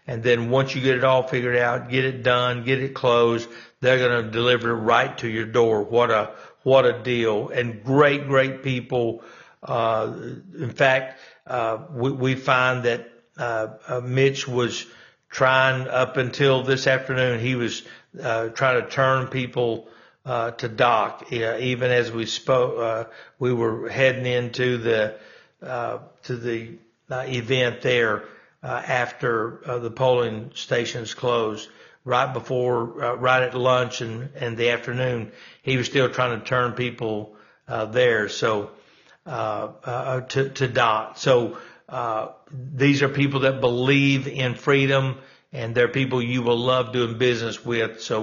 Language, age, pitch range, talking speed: English, 60-79, 115-130 Hz, 160 wpm